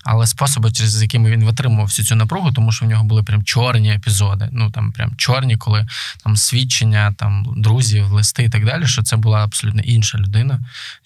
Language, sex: Ukrainian, male